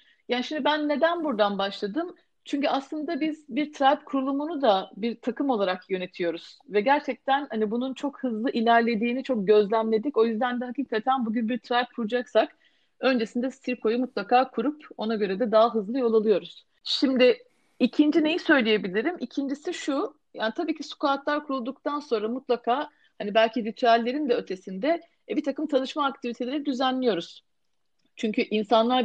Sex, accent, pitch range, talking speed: female, native, 215-275 Hz, 145 wpm